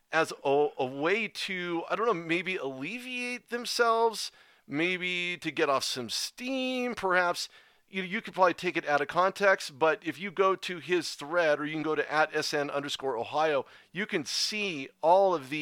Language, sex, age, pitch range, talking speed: English, male, 40-59, 150-185 Hz, 190 wpm